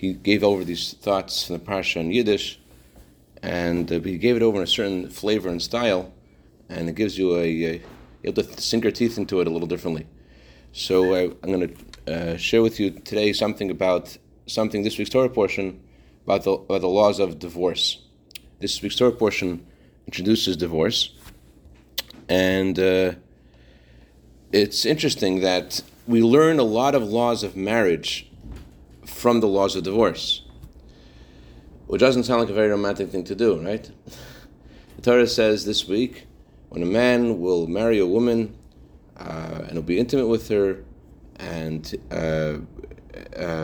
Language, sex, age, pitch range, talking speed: English, male, 40-59, 80-110 Hz, 160 wpm